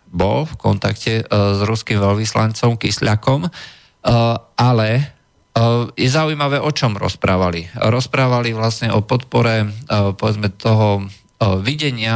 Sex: male